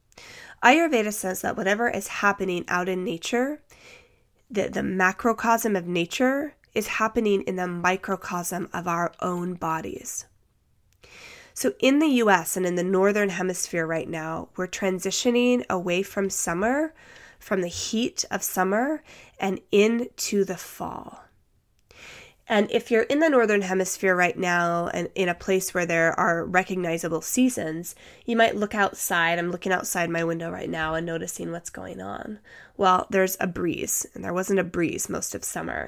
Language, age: English, 20-39